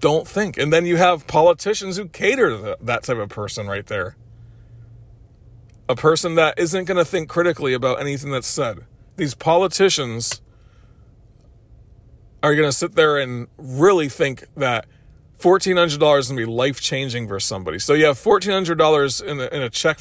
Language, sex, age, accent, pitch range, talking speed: English, male, 40-59, American, 110-155 Hz, 170 wpm